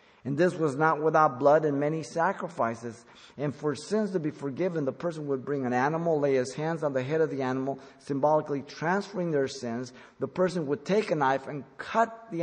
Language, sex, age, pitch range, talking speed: English, male, 50-69, 130-170 Hz, 210 wpm